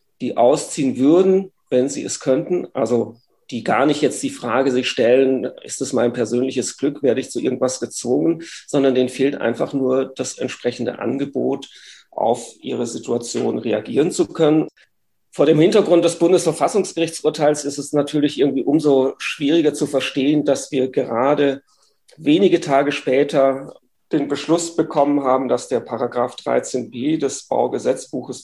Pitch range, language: 125-150 Hz, German